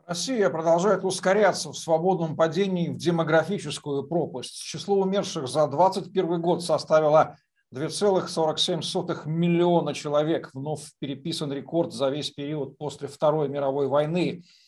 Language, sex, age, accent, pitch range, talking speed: Russian, male, 50-69, native, 150-185 Hz, 115 wpm